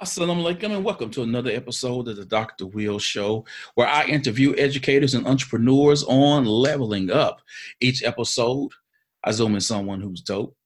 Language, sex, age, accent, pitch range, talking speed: English, male, 40-59, American, 110-170 Hz, 175 wpm